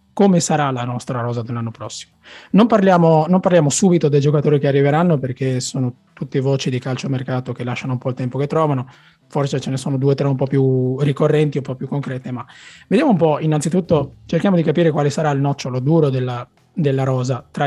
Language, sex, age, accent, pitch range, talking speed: Italian, male, 20-39, native, 130-160 Hz, 215 wpm